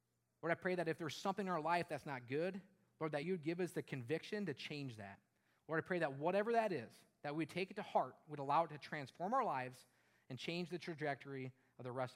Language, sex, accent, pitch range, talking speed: English, male, American, 130-185 Hz, 250 wpm